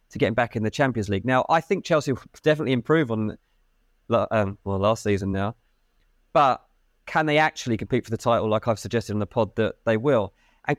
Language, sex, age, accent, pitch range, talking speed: English, male, 20-39, British, 110-155 Hz, 215 wpm